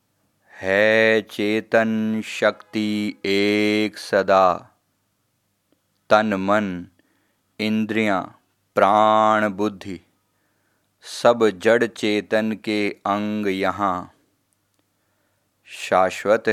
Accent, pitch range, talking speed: native, 95-105 Hz, 60 wpm